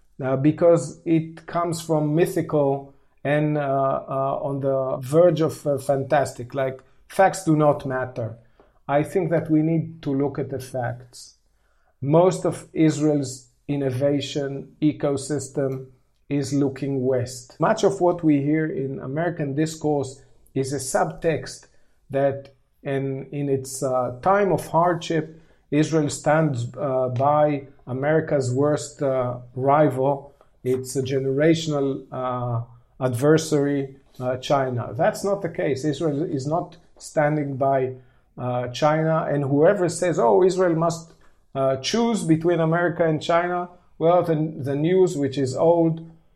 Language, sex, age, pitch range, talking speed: English, male, 50-69, 135-160 Hz, 130 wpm